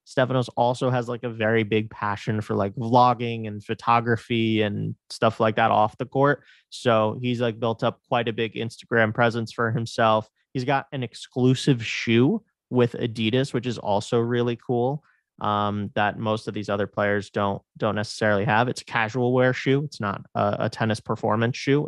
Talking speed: 185 wpm